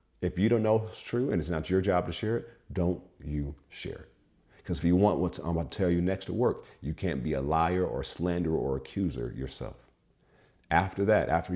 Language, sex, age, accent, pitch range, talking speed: English, male, 50-69, American, 80-95 Hz, 230 wpm